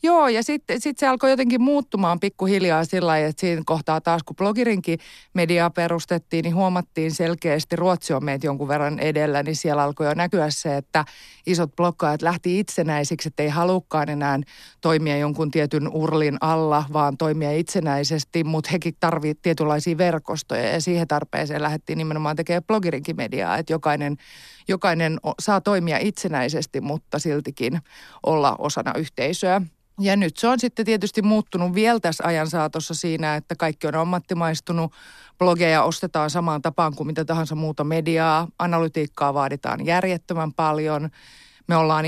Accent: native